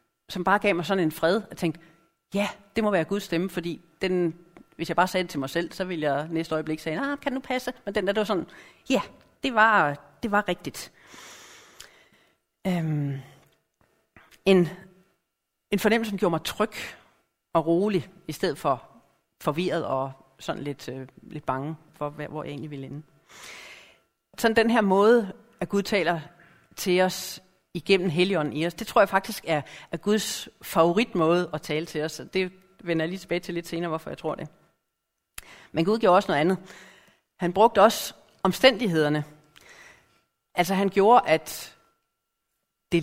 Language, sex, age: Danish, female, 40-59